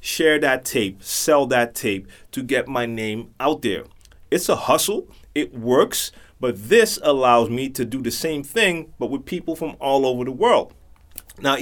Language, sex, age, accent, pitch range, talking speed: English, male, 30-49, American, 105-135 Hz, 180 wpm